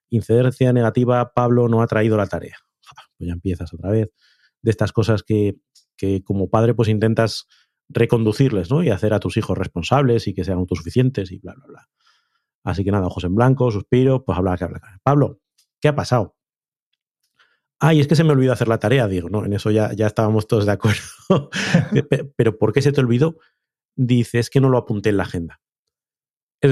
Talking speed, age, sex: 200 wpm, 30-49, male